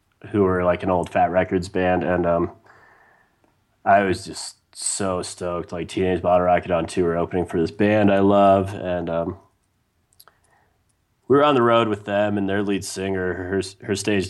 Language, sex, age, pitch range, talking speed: English, male, 30-49, 90-100 Hz, 180 wpm